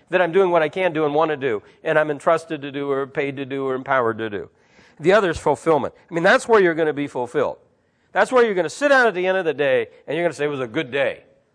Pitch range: 145-210 Hz